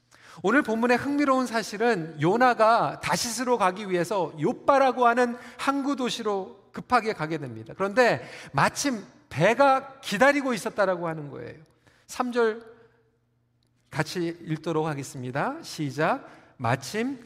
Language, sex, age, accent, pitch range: Korean, male, 40-59, native, 155-230 Hz